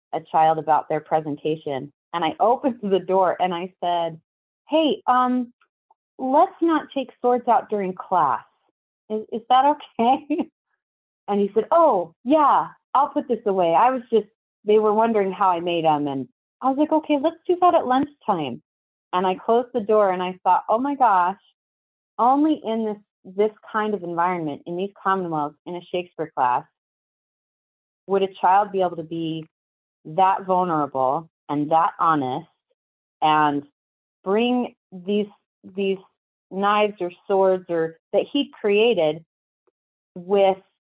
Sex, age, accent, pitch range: female, 30-49, American, 160-225 Hz